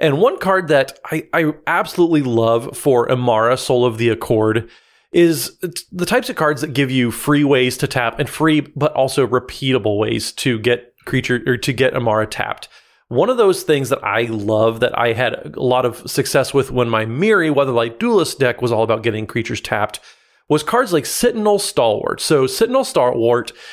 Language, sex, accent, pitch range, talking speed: English, male, American, 125-160 Hz, 190 wpm